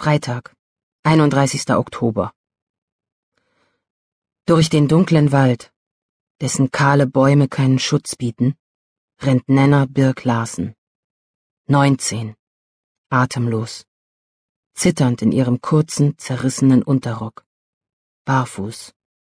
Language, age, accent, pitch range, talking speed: German, 40-59, German, 125-155 Hz, 80 wpm